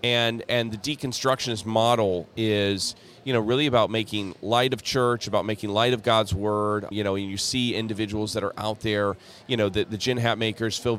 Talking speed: 205 wpm